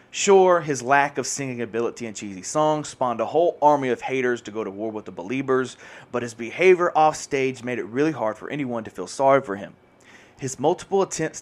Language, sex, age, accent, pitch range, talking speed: English, male, 30-49, American, 115-145 Hz, 210 wpm